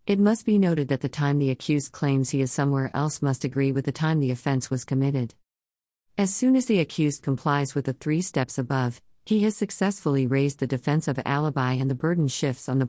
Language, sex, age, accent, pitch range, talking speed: English, female, 50-69, American, 130-155 Hz, 225 wpm